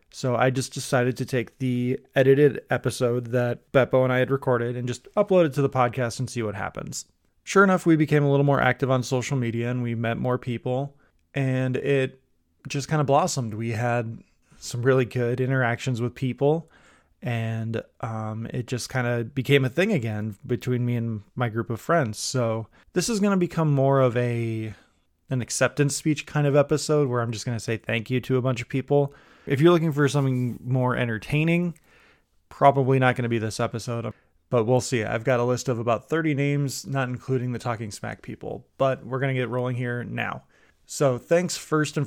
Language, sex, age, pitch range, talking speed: English, male, 20-39, 115-135 Hz, 205 wpm